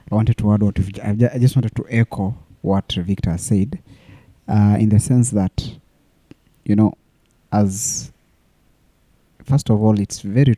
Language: English